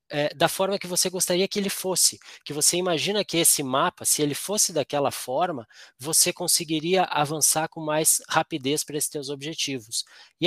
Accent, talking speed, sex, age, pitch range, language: Brazilian, 170 wpm, male, 20-39, 130-170 Hz, Portuguese